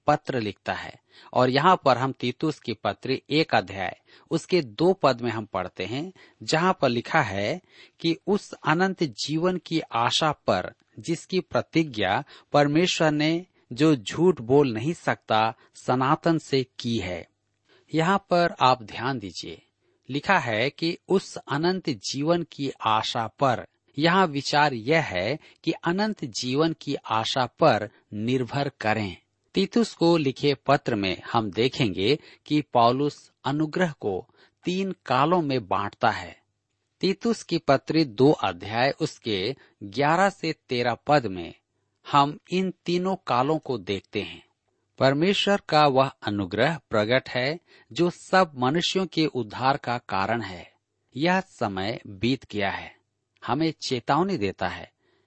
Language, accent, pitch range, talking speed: Hindi, native, 115-165 Hz, 135 wpm